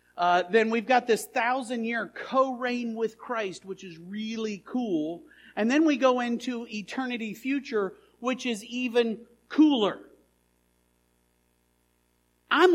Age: 50-69